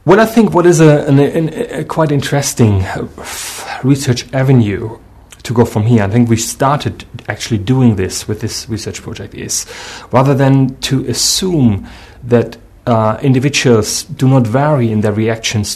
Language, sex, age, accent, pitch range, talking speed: English, male, 30-49, German, 110-125 Hz, 160 wpm